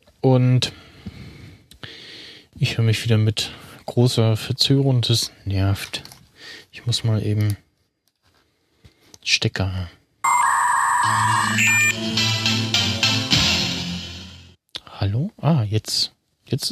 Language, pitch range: German, 110-135 Hz